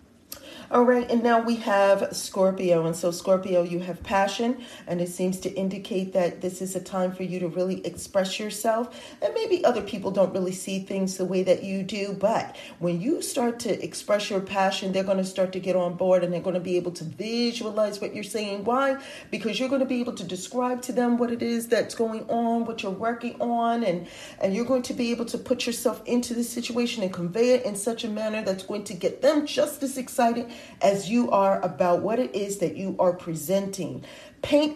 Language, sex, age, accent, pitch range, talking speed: English, female, 40-59, American, 185-245 Hz, 225 wpm